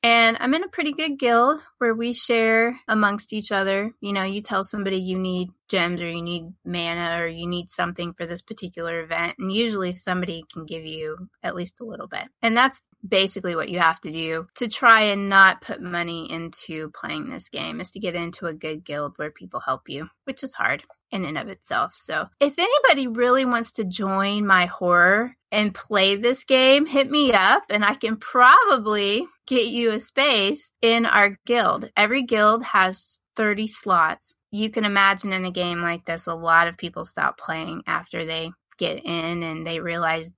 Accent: American